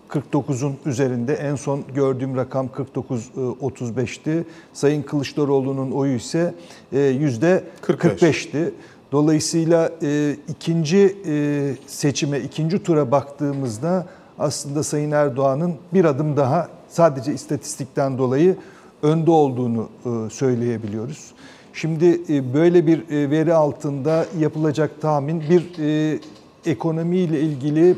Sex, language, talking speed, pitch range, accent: male, Turkish, 85 wpm, 140-165 Hz, native